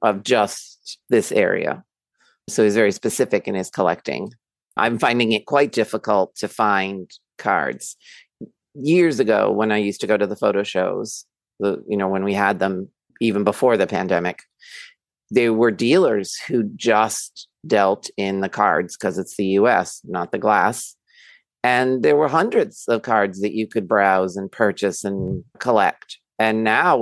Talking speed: 160 wpm